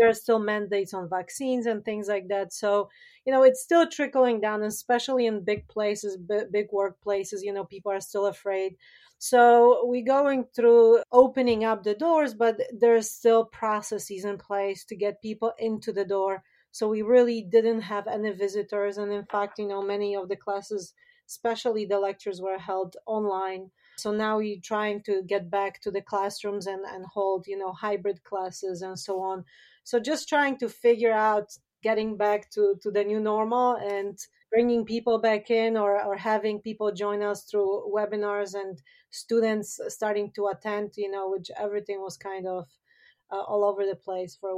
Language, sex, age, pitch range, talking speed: English, female, 40-59, 195-225 Hz, 185 wpm